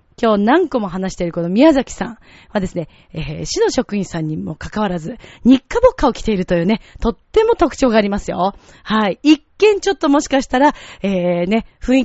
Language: Japanese